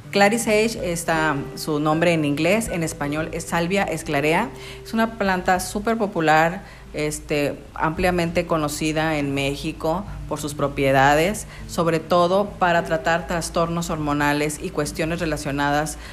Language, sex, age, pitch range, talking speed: Spanish, female, 40-59, 150-180 Hz, 125 wpm